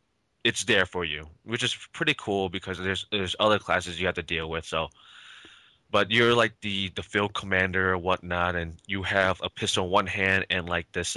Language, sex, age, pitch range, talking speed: English, male, 20-39, 90-110 Hz, 210 wpm